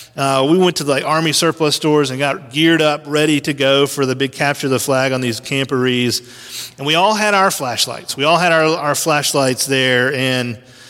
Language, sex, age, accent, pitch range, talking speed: English, male, 40-59, American, 130-155 Hz, 220 wpm